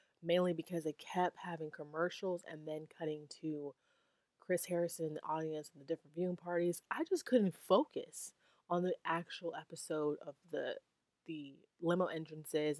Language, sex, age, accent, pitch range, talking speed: English, female, 20-39, American, 155-200 Hz, 150 wpm